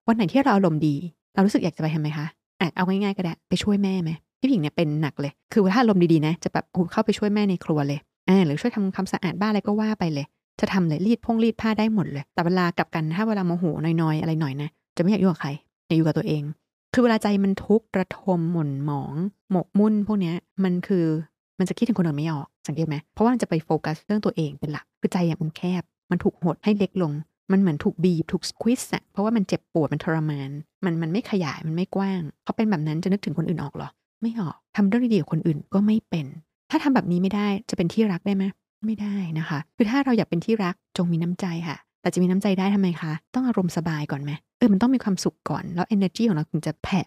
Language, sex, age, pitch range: Thai, female, 20-39, 160-210 Hz